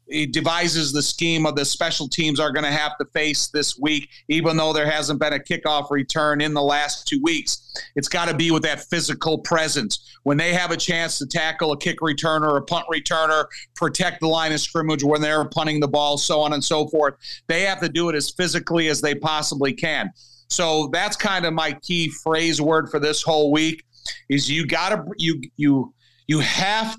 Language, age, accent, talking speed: English, 40-59, American, 215 wpm